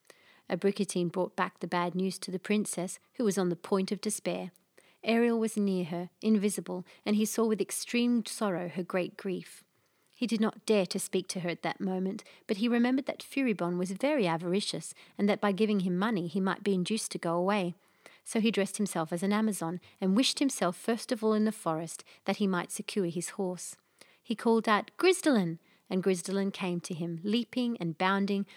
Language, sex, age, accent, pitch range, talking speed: English, female, 30-49, Australian, 180-220 Hz, 205 wpm